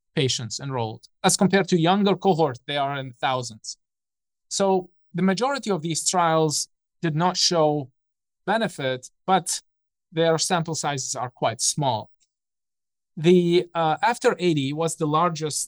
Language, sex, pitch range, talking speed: English, male, 140-175 Hz, 135 wpm